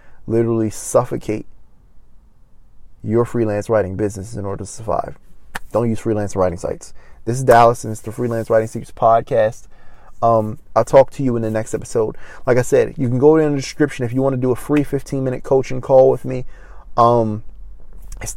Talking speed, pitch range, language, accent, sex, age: 185 wpm, 105-130 Hz, English, American, male, 20-39